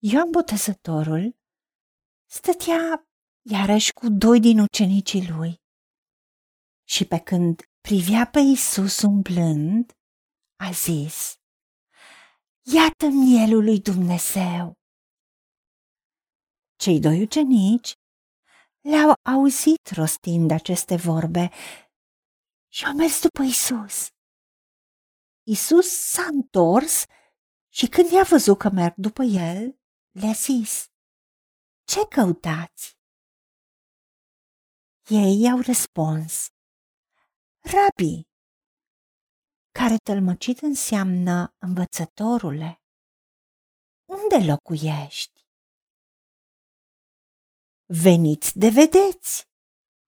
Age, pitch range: 50-69, 175-270 Hz